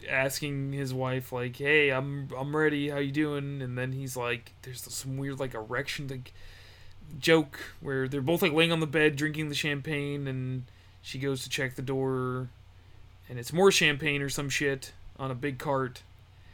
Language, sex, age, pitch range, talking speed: English, male, 20-39, 125-160 Hz, 185 wpm